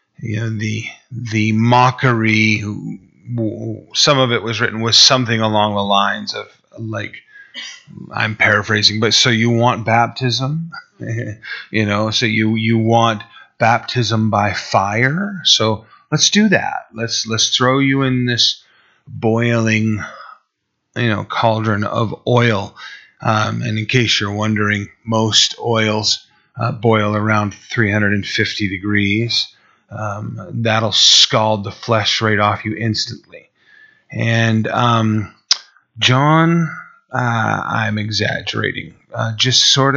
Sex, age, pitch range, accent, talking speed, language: male, 30-49, 110-125 Hz, American, 120 wpm, English